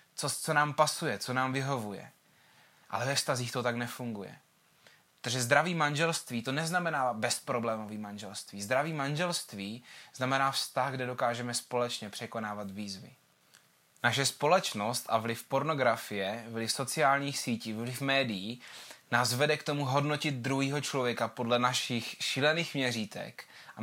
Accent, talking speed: native, 130 wpm